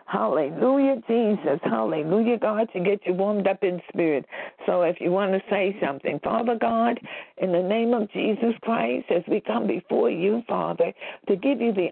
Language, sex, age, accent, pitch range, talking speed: English, female, 60-79, American, 220-270 Hz, 180 wpm